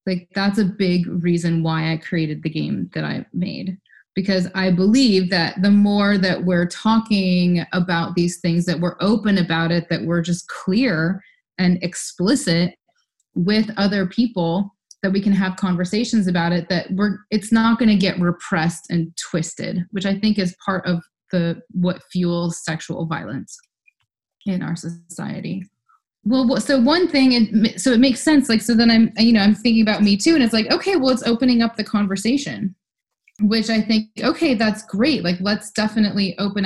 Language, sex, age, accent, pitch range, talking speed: English, female, 20-39, American, 180-230 Hz, 180 wpm